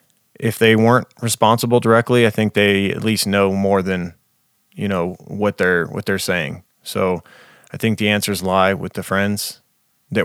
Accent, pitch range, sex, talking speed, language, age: American, 100-110 Hz, male, 175 wpm, English, 20-39